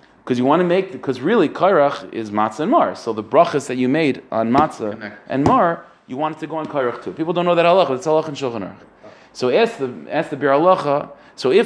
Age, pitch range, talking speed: 30-49, 125-165 Hz, 230 wpm